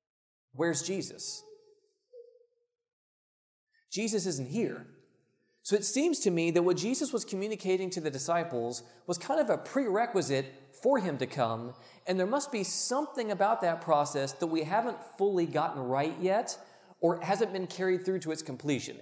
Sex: male